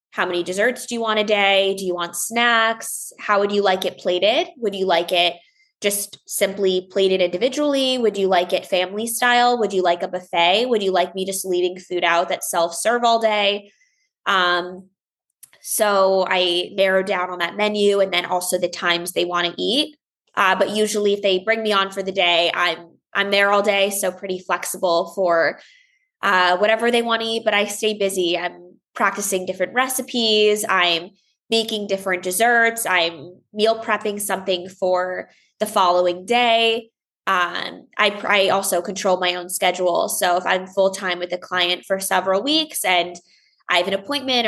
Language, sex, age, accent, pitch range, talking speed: English, female, 20-39, American, 180-215 Hz, 180 wpm